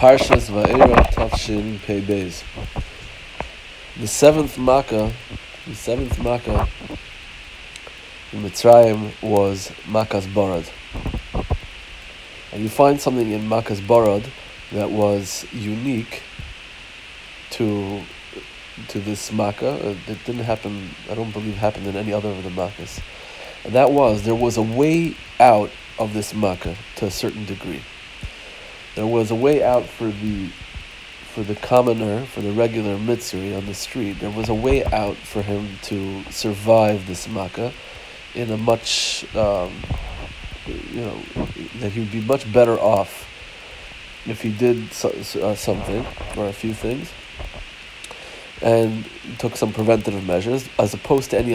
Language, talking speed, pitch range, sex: Hebrew, 135 wpm, 100-115 Hz, male